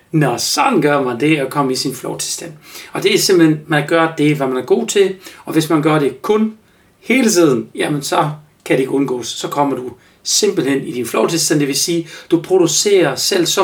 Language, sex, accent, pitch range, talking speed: Danish, male, native, 140-175 Hz, 235 wpm